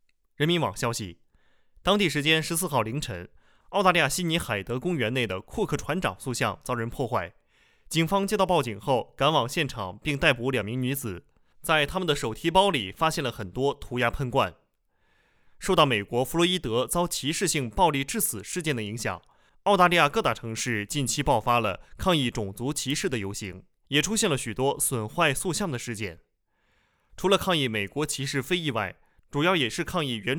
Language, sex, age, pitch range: Chinese, male, 20-39, 110-165 Hz